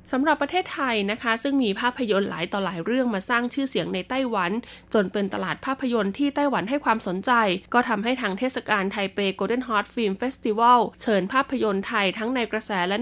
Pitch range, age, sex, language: 205-255 Hz, 20-39, female, Thai